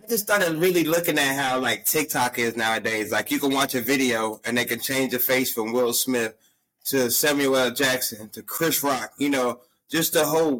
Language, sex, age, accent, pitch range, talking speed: English, male, 30-49, American, 125-155 Hz, 215 wpm